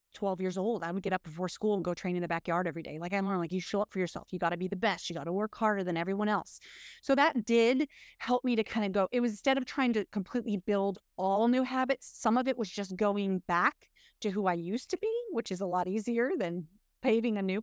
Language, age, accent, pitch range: English, 30-49, American, 195-255 Hz